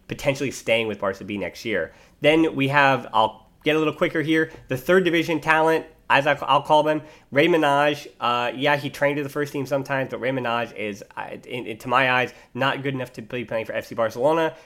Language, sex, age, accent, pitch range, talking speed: English, male, 20-39, American, 115-145 Hz, 225 wpm